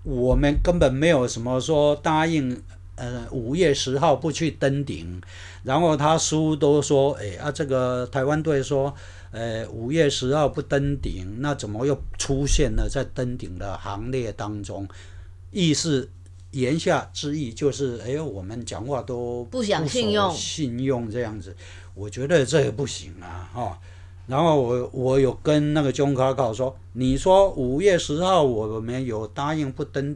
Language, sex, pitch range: Chinese, male, 105-145 Hz